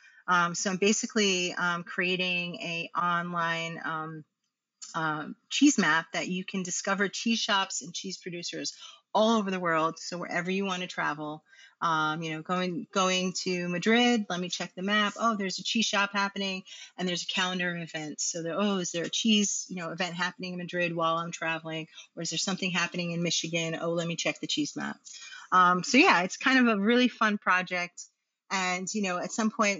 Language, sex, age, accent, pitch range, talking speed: English, female, 30-49, American, 165-200 Hz, 205 wpm